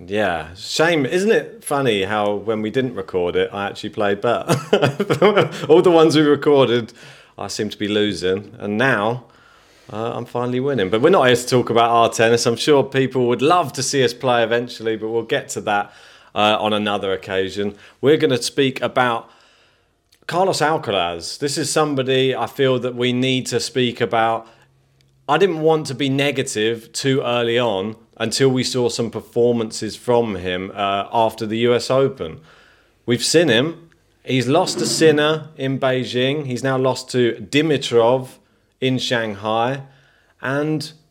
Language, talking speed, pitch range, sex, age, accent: English, 170 wpm, 115-145 Hz, male, 30-49, British